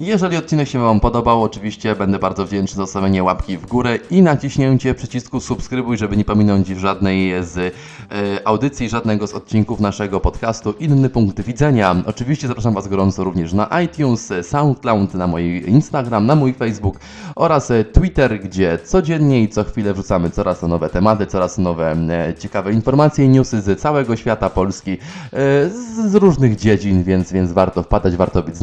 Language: Polish